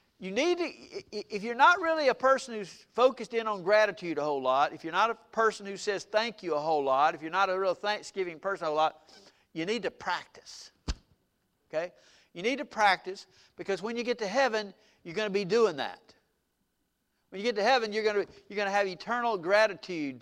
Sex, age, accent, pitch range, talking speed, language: male, 50-69, American, 165-220 Hz, 220 wpm, English